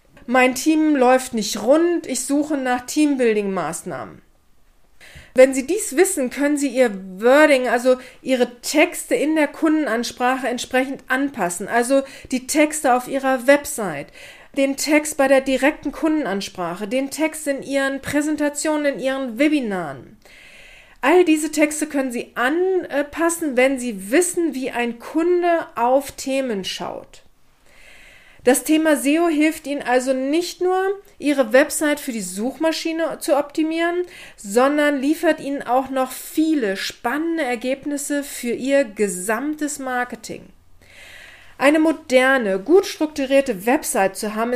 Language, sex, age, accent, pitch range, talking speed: German, female, 40-59, German, 250-305 Hz, 125 wpm